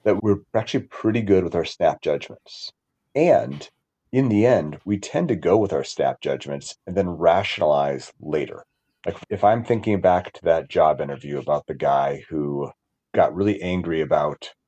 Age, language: 30-49, English